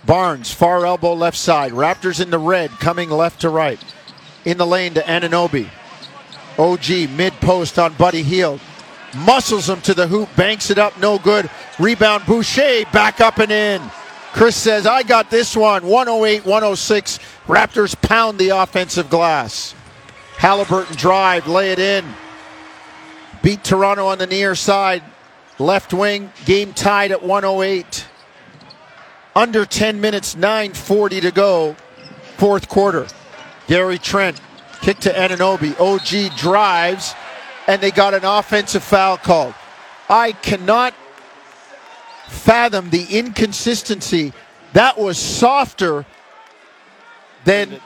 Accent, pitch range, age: American, 180-210 Hz, 50-69